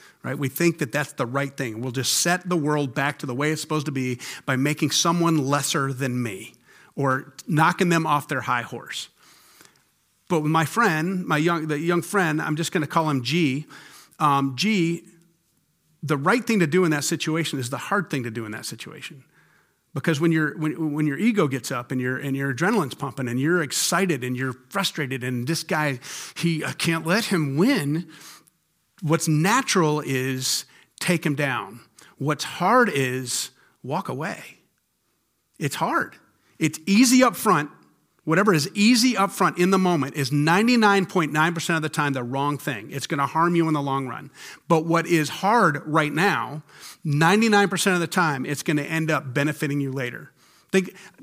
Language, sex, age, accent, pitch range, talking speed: English, male, 40-59, American, 140-180 Hz, 185 wpm